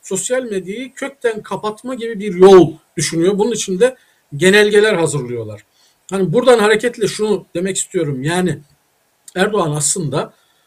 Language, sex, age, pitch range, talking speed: Turkish, male, 50-69, 155-205 Hz, 125 wpm